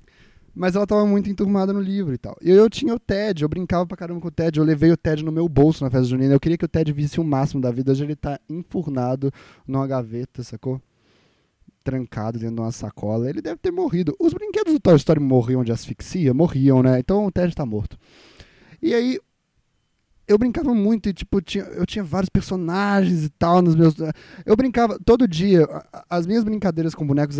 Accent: Brazilian